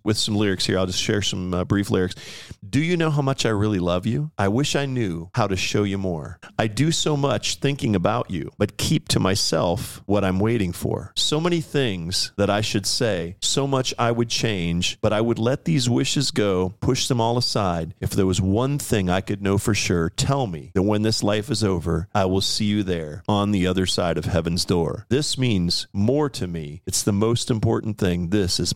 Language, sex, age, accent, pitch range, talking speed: English, male, 40-59, American, 90-115 Hz, 225 wpm